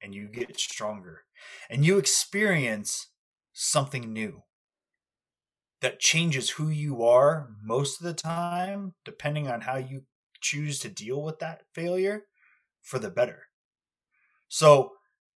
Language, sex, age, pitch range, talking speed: English, male, 20-39, 125-165 Hz, 125 wpm